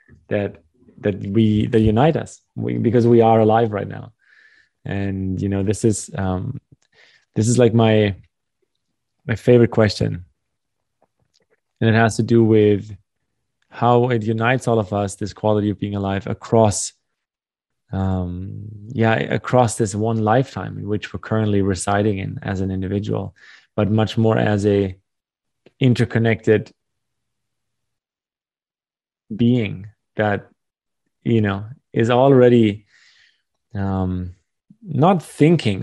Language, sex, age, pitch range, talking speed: English, male, 20-39, 100-120 Hz, 125 wpm